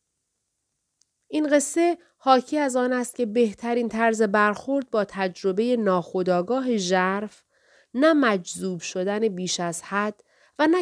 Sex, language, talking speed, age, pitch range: female, Persian, 120 wpm, 40-59, 180-250 Hz